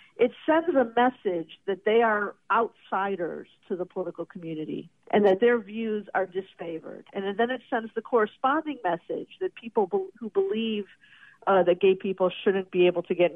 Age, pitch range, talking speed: 50-69, 185-230 Hz, 170 wpm